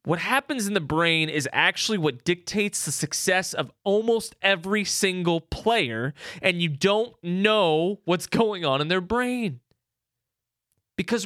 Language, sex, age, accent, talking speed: English, male, 20-39, American, 145 wpm